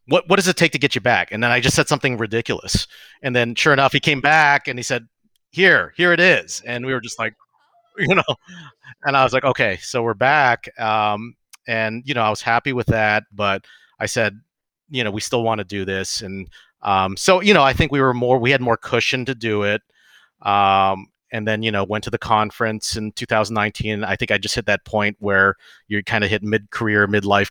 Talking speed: 235 wpm